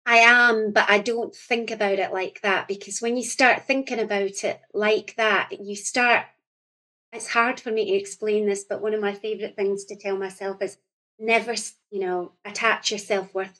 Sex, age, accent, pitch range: female, 30-49, British, 195-230 Hz